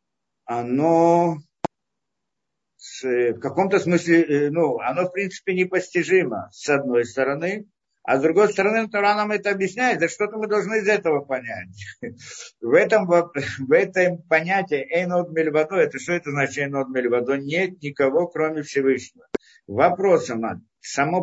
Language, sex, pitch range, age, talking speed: Russian, male, 135-175 Hz, 50-69, 115 wpm